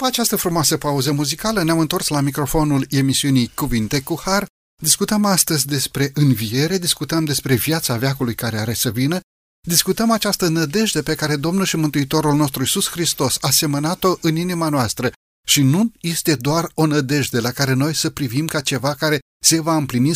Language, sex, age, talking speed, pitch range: Romanian, male, 30-49, 175 wpm, 130-165 Hz